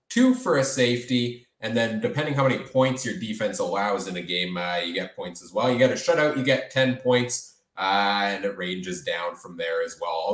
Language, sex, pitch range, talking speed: English, male, 120-180 Hz, 230 wpm